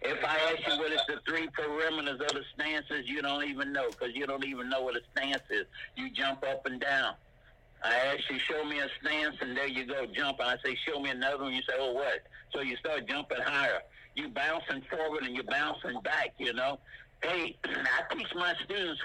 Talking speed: 230 wpm